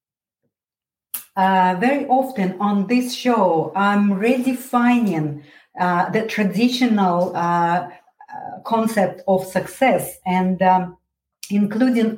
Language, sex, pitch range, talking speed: English, female, 170-205 Hz, 90 wpm